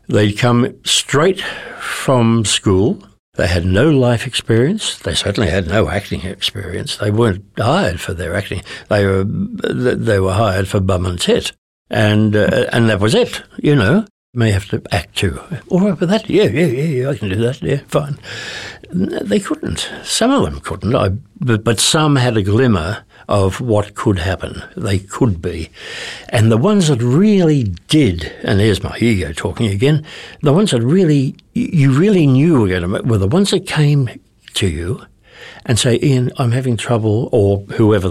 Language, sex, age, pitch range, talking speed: English, male, 60-79, 100-130 Hz, 180 wpm